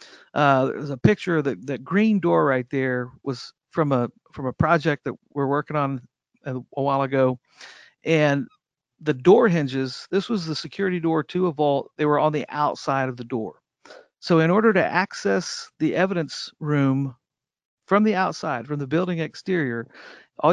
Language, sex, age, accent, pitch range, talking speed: English, male, 50-69, American, 135-175 Hz, 180 wpm